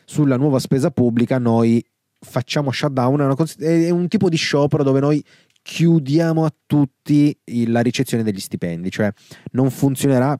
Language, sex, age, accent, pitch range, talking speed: Italian, male, 20-39, native, 110-140 Hz, 140 wpm